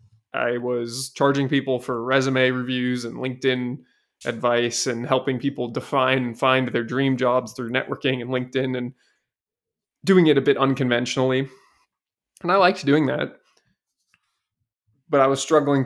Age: 20-39